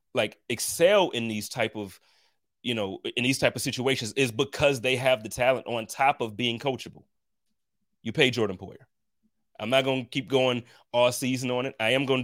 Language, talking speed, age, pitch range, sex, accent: English, 200 wpm, 30-49, 110-135 Hz, male, American